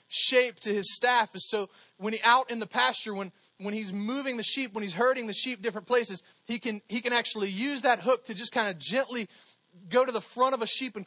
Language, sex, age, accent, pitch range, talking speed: English, male, 30-49, American, 205-265 Hz, 250 wpm